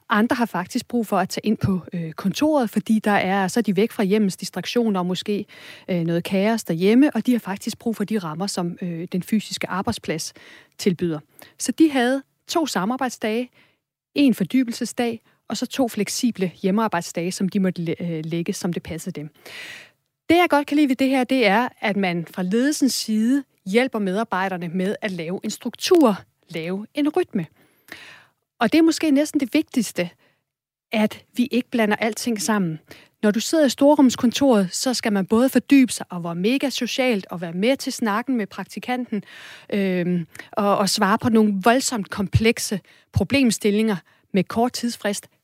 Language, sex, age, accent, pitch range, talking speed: Danish, female, 30-49, native, 185-245 Hz, 170 wpm